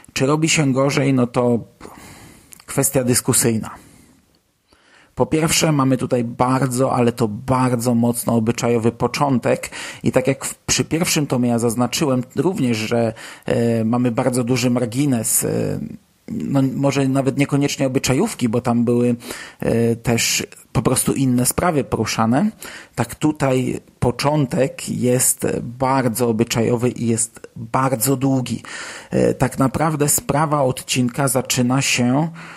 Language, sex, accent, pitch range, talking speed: Polish, male, native, 120-145 Hz, 120 wpm